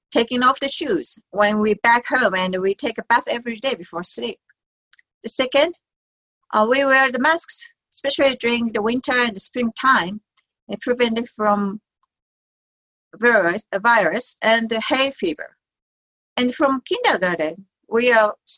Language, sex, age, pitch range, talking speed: English, female, 40-59, 200-265 Hz, 135 wpm